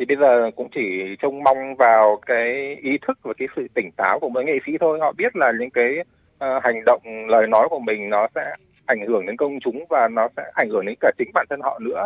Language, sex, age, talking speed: Vietnamese, male, 20-39, 255 wpm